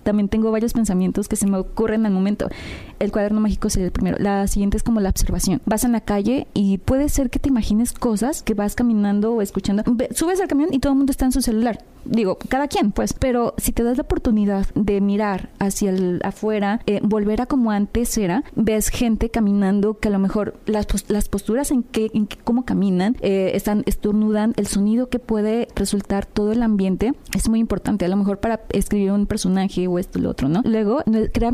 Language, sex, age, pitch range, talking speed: Spanish, female, 30-49, 205-245 Hz, 220 wpm